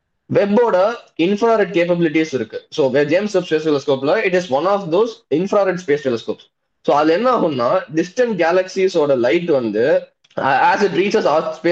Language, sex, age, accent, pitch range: Tamil, male, 20-39, native, 155-210 Hz